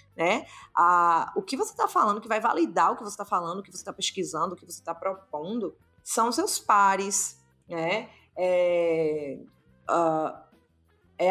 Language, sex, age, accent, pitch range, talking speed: Portuguese, female, 20-39, Brazilian, 195-250 Hz, 170 wpm